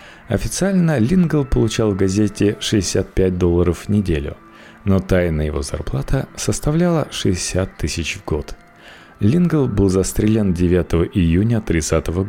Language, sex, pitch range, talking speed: Russian, male, 85-115 Hz, 115 wpm